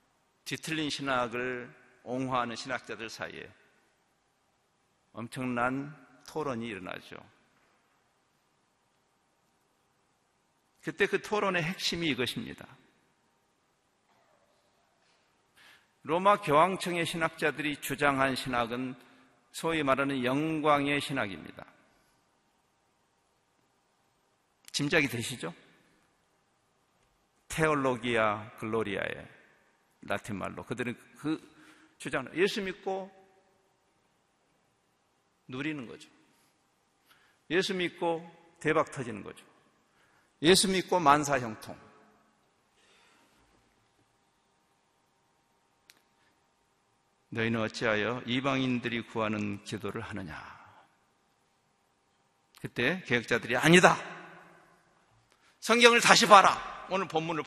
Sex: male